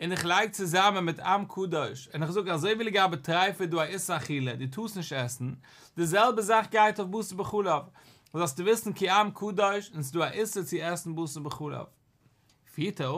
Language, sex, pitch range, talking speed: English, male, 135-190 Hz, 165 wpm